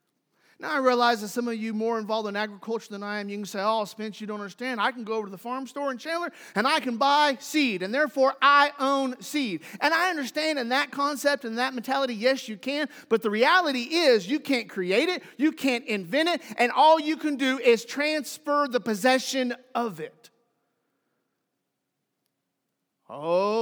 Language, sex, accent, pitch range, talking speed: English, male, American, 210-275 Hz, 200 wpm